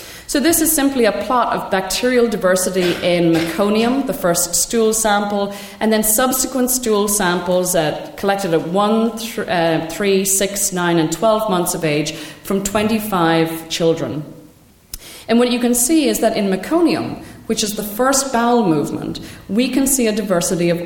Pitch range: 170-220 Hz